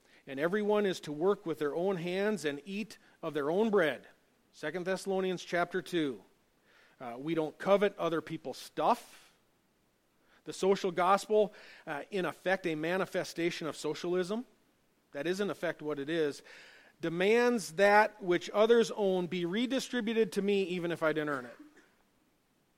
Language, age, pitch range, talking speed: English, 40-59, 165-230 Hz, 155 wpm